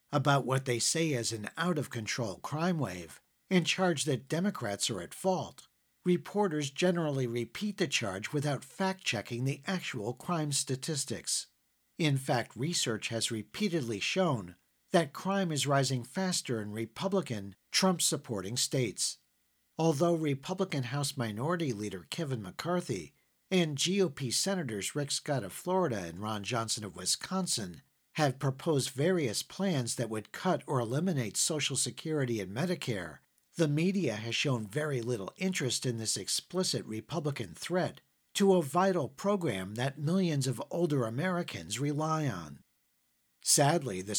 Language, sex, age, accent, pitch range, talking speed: English, male, 50-69, American, 115-170 Hz, 135 wpm